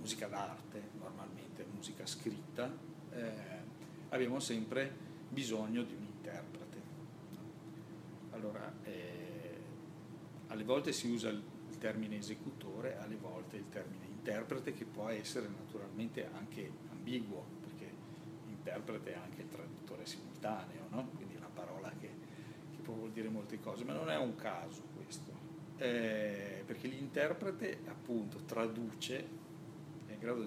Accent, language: native, Italian